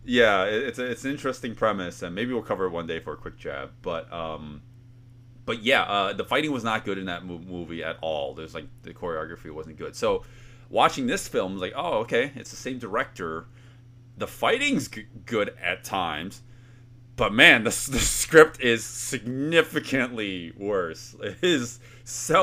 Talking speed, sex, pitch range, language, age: 180 wpm, male, 105-125 Hz, English, 30-49